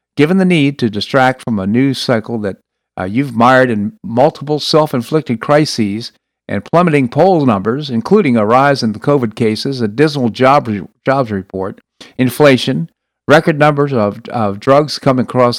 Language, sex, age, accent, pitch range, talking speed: English, male, 50-69, American, 110-140 Hz, 160 wpm